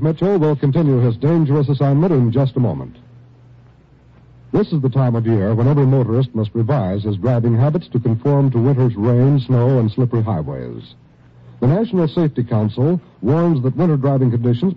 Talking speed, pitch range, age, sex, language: 170 wpm, 120-155 Hz, 60-79, male, English